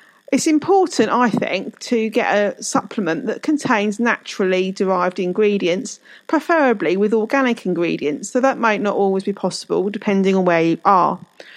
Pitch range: 200-260 Hz